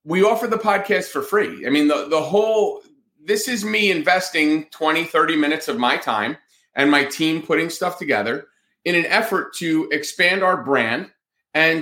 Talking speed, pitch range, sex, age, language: 180 wpm, 155-210 Hz, male, 30-49, English